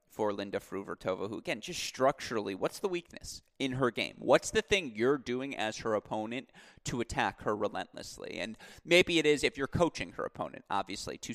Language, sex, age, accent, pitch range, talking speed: English, male, 30-49, American, 110-135 Hz, 190 wpm